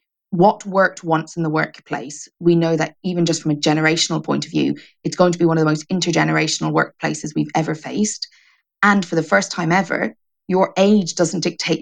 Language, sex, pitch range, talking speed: English, female, 160-195 Hz, 205 wpm